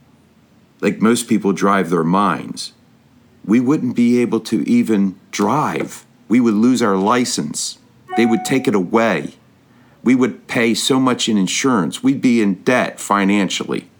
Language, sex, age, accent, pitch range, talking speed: English, male, 50-69, American, 100-130 Hz, 150 wpm